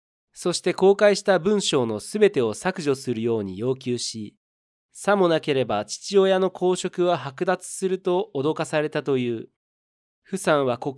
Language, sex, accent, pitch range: Japanese, male, native, 120-185 Hz